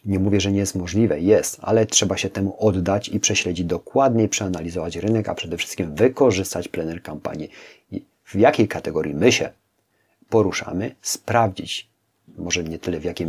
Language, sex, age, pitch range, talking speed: Polish, male, 40-59, 90-110 Hz, 165 wpm